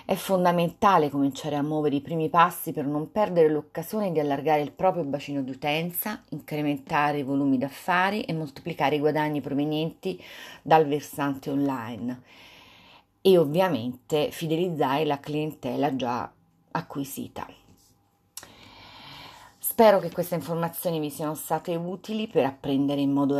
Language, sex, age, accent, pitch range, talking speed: Italian, female, 30-49, native, 140-165 Hz, 125 wpm